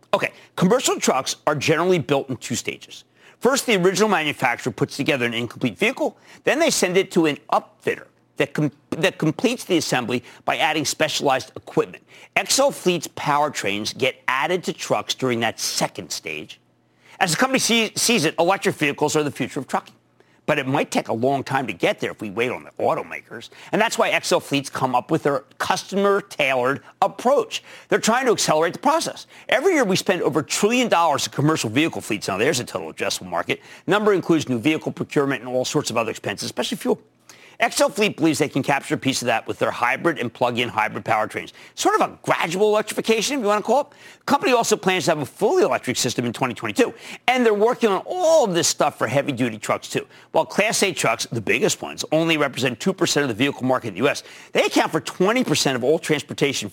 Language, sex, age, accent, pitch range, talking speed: English, male, 50-69, American, 130-200 Hz, 210 wpm